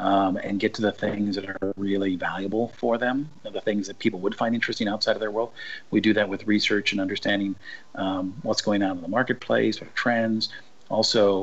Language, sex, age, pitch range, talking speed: English, male, 40-59, 95-110 Hz, 210 wpm